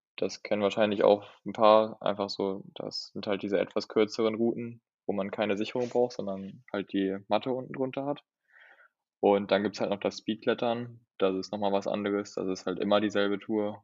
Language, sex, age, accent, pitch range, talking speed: German, male, 10-29, German, 100-110 Hz, 200 wpm